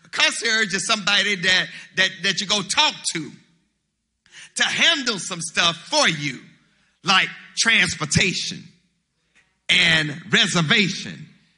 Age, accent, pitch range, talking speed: 50-69, American, 185-255 Hz, 105 wpm